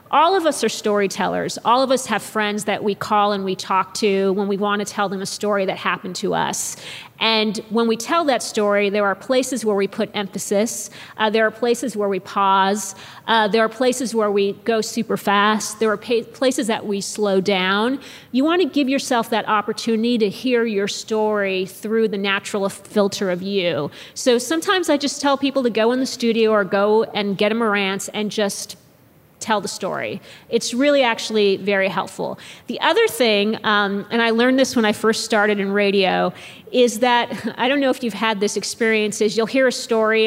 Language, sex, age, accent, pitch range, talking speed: English, female, 40-59, American, 205-235 Hz, 205 wpm